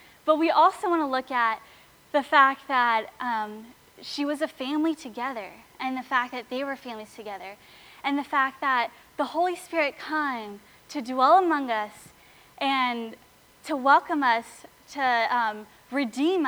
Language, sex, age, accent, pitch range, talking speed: English, female, 10-29, American, 255-320 Hz, 155 wpm